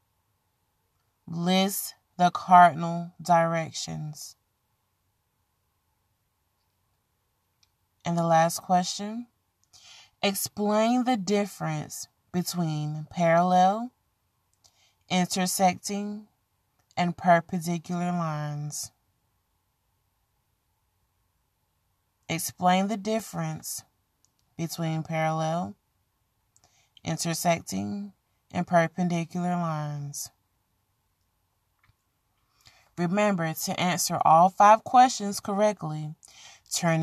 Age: 20-39